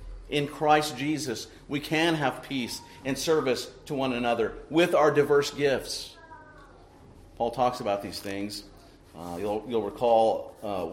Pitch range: 105-145 Hz